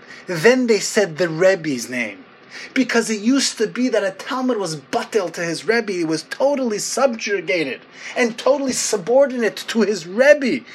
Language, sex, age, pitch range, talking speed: English, male, 30-49, 170-230 Hz, 160 wpm